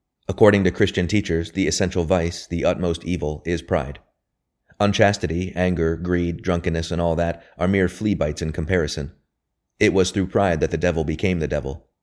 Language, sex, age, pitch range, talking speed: English, male, 30-49, 80-95 Hz, 175 wpm